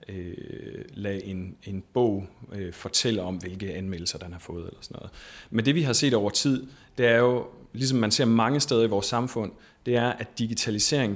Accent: native